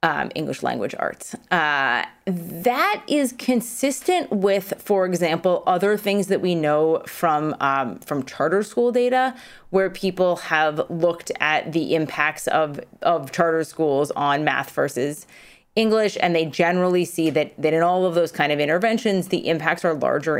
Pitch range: 155-195 Hz